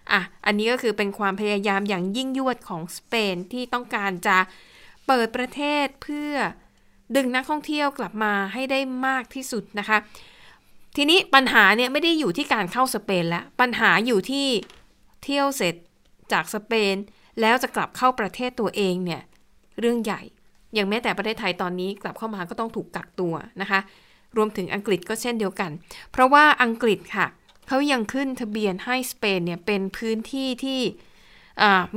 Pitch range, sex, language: 200-255 Hz, female, Thai